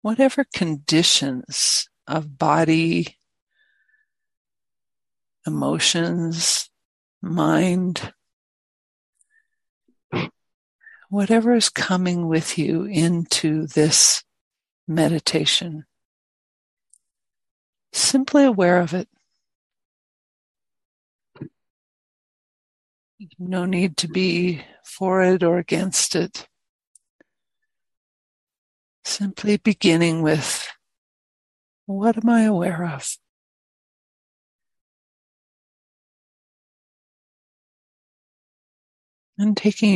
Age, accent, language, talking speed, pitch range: 60-79, American, English, 55 wpm, 160-220 Hz